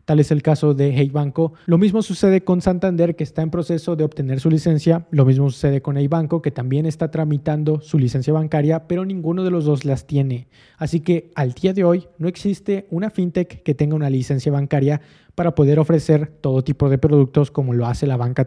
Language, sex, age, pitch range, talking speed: Spanish, male, 20-39, 140-165 Hz, 220 wpm